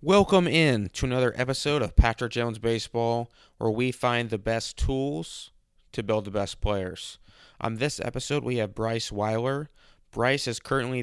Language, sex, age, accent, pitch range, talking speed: English, male, 20-39, American, 110-120 Hz, 165 wpm